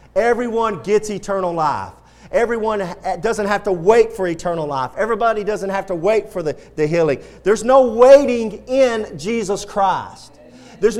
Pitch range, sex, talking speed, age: 200-245 Hz, male, 155 wpm, 40-59